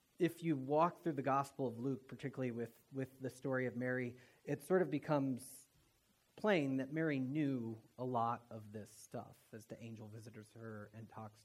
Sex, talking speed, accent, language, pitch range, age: male, 185 wpm, American, English, 115-140 Hz, 30-49